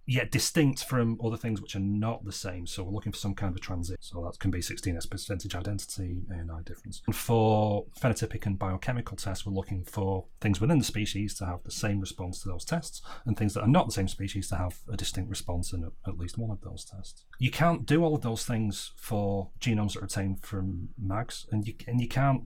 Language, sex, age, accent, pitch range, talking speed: English, male, 30-49, British, 95-120 Hz, 240 wpm